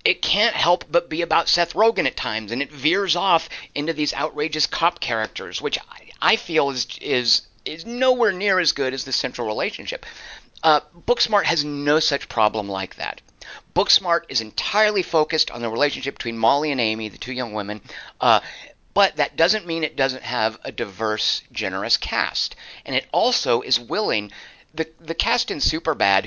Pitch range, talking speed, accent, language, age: 115-170 Hz, 180 wpm, American, English, 50-69